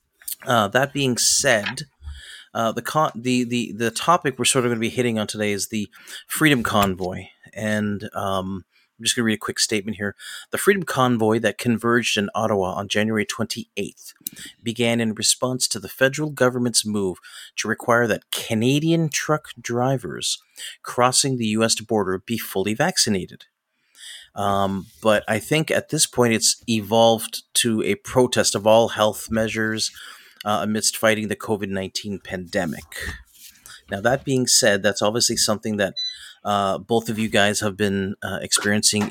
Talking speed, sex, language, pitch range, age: 160 wpm, male, English, 100-115 Hz, 30-49